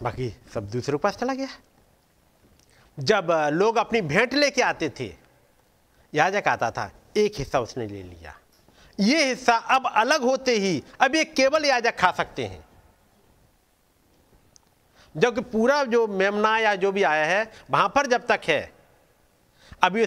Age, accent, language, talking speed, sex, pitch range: 50-69, native, Hindi, 145 wpm, male, 185-265 Hz